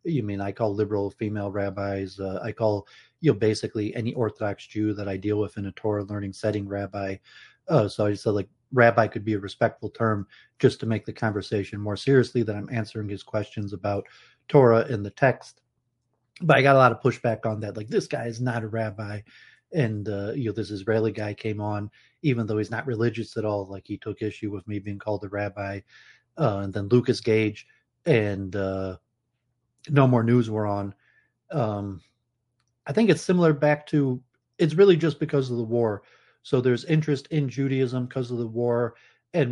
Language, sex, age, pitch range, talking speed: English, male, 30-49, 105-125 Hz, 200 wpm